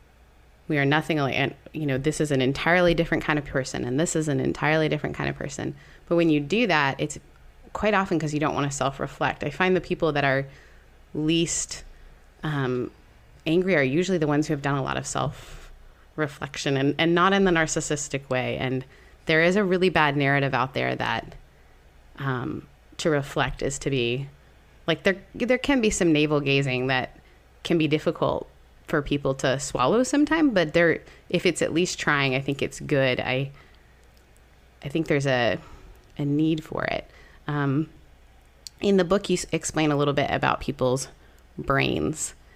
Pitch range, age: 130-165 Hz, 20-39